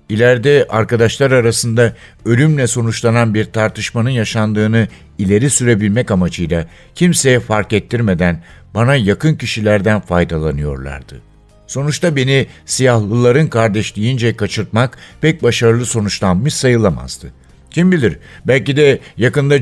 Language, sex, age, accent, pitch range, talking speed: Turkish, male, 60-79, native, 100-125 Hz, 100 wpm